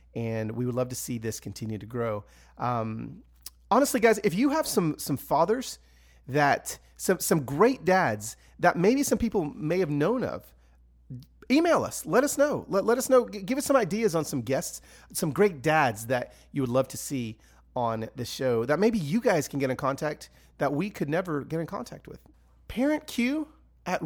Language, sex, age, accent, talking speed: English, male, 30-49, American, 195 wpm